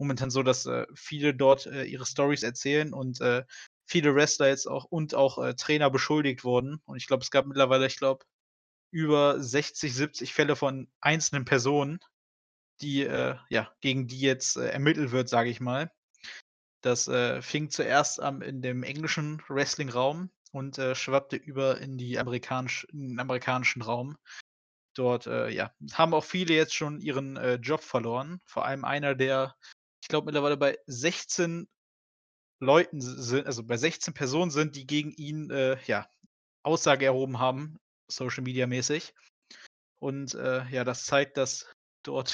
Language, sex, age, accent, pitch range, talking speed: German, male, 20-39, German, 130-150 Hz, 160 wpm